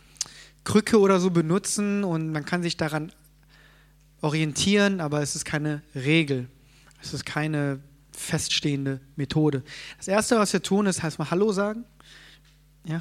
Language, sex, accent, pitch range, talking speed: German, male, German, 150-180 Hz, 145 wpm